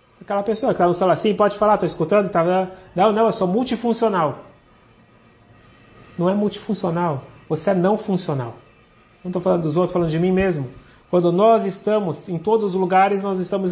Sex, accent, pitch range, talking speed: male, Brazilian, 145-200 Hz, 185 wpm